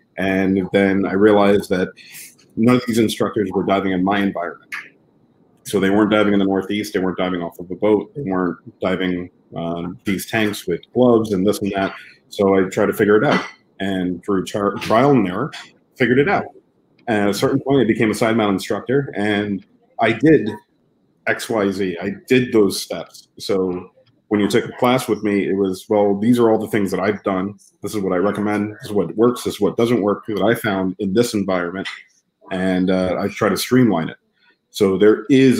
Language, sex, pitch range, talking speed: English, male, 95-110 Hz, 210 wpm